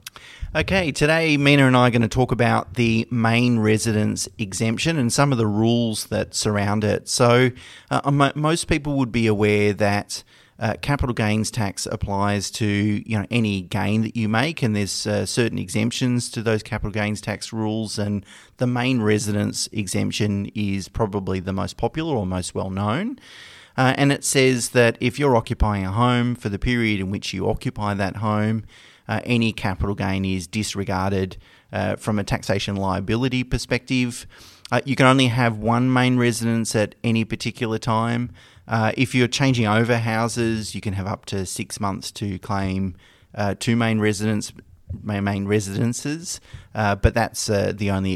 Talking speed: 170 wpm